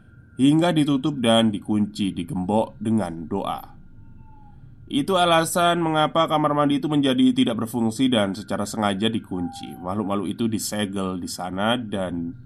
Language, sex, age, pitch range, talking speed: Indonesian, male, 20-39, 105-145 Hz, 125 wpm